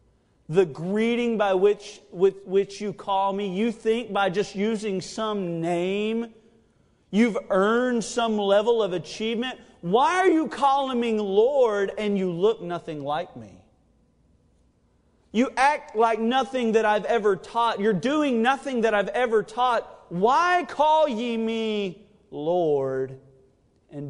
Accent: American